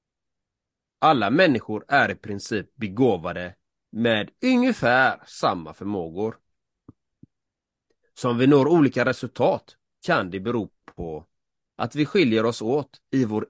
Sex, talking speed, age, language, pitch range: male, 115 wpm, 30-49, Swedish, 95-125 Hz